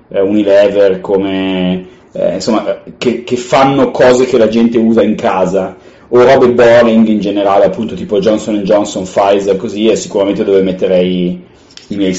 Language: Italian